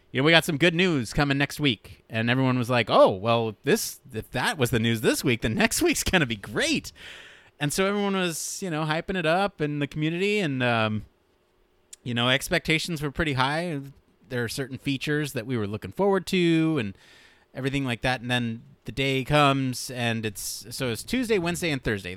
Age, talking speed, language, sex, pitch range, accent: 30-49, 215 wpm, English, male, 110-145 Hz, American